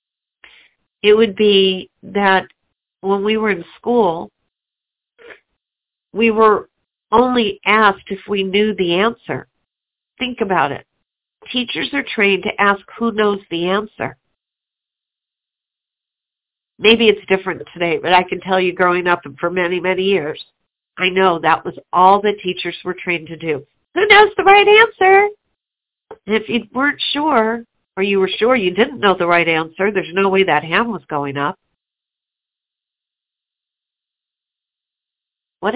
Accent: American